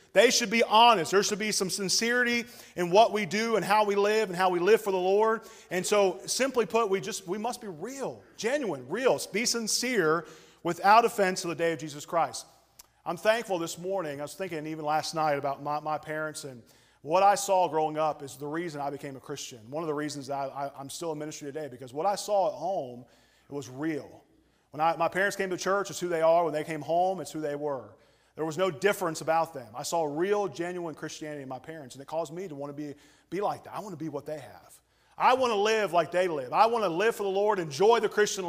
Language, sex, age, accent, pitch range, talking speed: English, male, 40-59, American, 155-195 Hz, 250 wpm